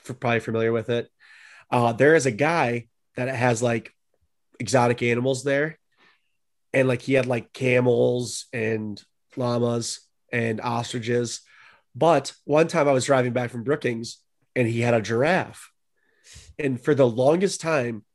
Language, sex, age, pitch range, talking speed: English, male, 30-49, 120-140 Hz, 145 wpm